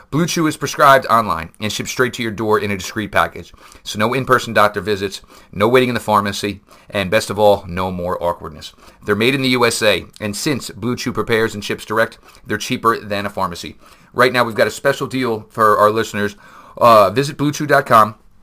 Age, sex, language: 40-59, male, English